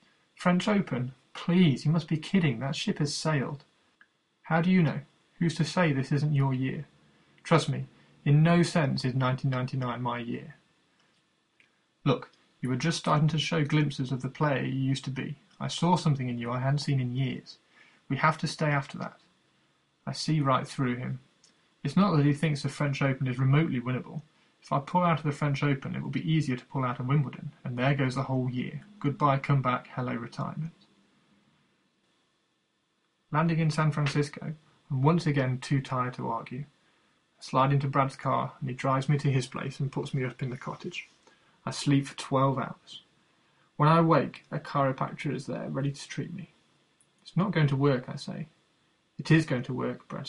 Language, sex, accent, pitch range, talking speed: English, male, British, 135-160 Hz, 195 wpm